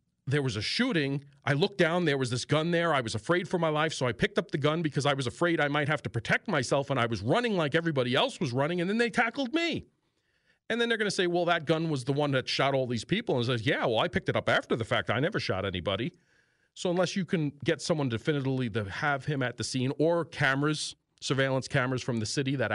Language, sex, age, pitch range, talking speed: English, male, 40-59, 115-165 Hz, 265 wpm